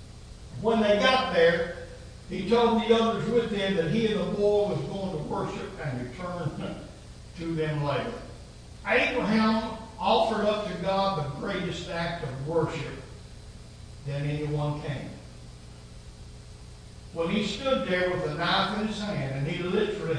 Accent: American